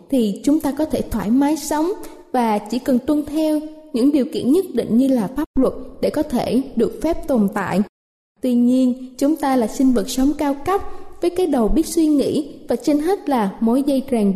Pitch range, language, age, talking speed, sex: 235-310 Hz, Vietnamese, 20-39, 215 wpm, female